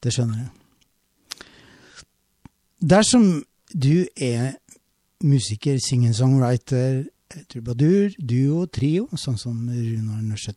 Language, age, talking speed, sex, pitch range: English, 60-79, 95 wpm, male, 120-160 Hz